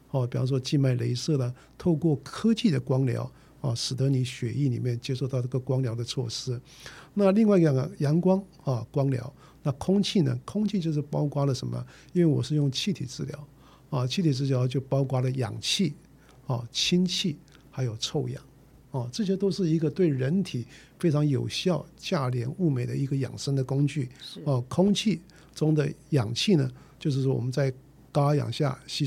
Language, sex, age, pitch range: Chinese, male, 50-69, 130-155 Hz